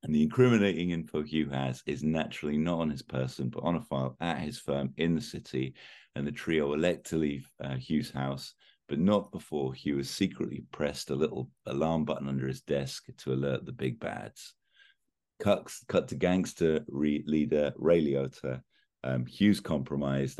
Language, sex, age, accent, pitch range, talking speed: English, male, 50-69, British, 70-90 Hz, 180 wpm